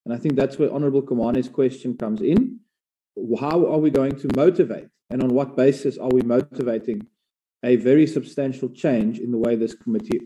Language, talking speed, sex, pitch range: English, 185 wpm, male, 130-185 Hz